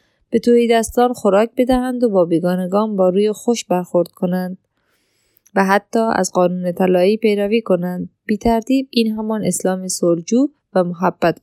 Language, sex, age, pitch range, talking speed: Persian, female, 20-39, 185-225 Hz, 140 wpm